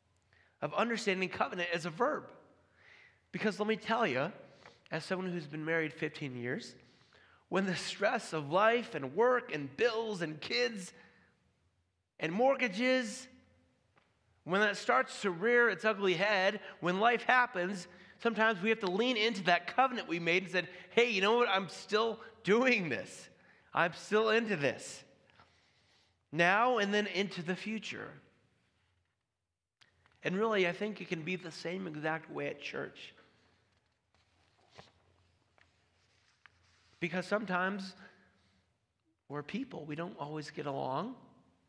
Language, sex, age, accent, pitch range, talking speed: English, male, 30-49, American, 145-210 Hz, 135 wpm